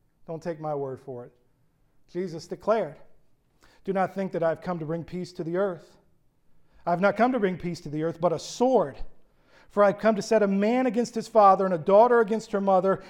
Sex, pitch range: male, 155-205 Hz